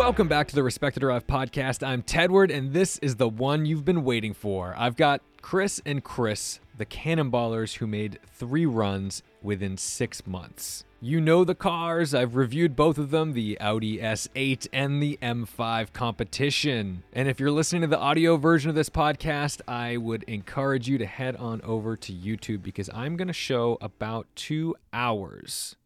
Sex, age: male, 30-49